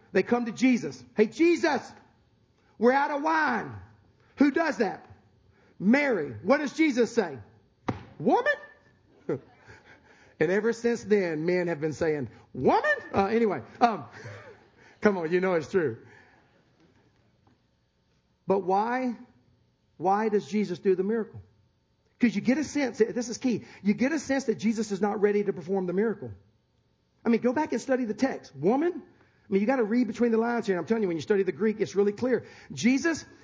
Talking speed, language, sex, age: 175 wpm, English, male, 40-59